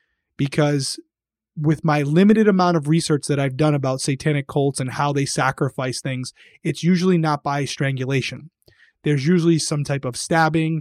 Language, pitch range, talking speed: English, 140-165 Hz, 160 wpm